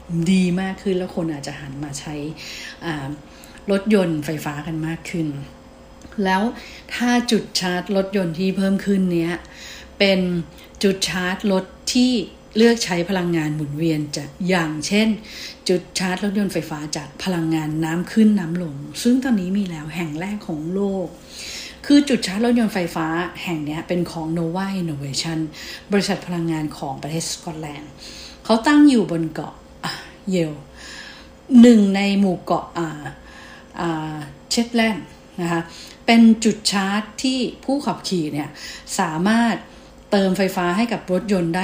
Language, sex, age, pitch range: English, female, 60-79, 165-205 Hz